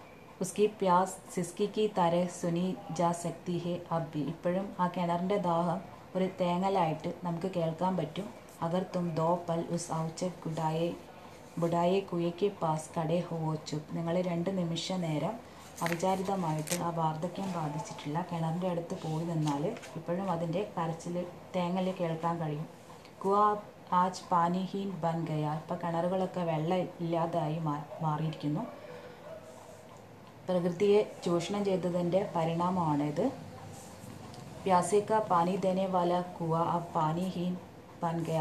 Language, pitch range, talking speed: Hindi, 165-185 Hz, 75 wpm